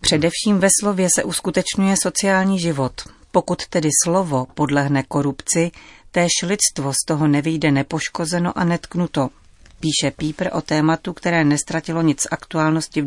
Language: Czech